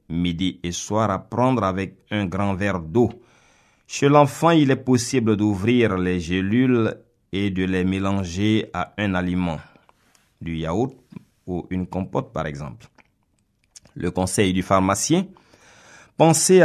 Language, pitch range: French, 95-125 Hz